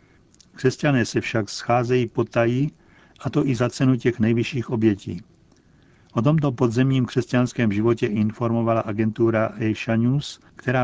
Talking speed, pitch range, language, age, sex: 125 wpm, 110-125 Hz, Czech, 50-69, male